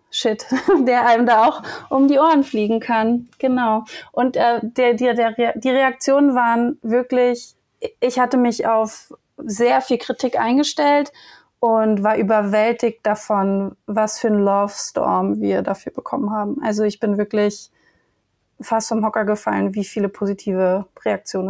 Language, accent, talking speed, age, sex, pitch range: German, German, 135 wpm, 30-49, female, 210-250 Hz